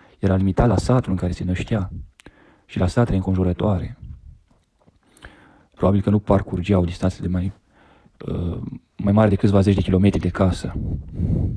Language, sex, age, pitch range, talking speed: Romanian, male, 30-49, 90-110 Hz, 155 wpm